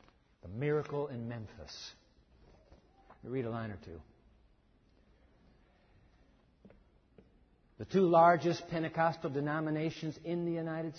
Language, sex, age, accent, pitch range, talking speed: English, male, 60-79, American, 140-195 Hz, 105 wpm